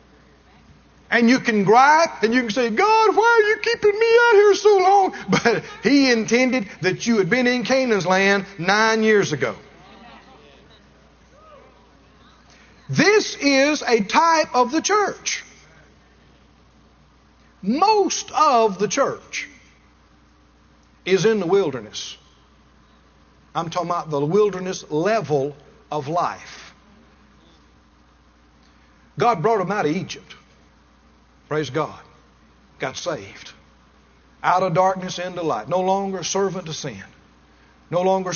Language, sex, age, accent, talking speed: English, male, 50-69, American, 120 wpm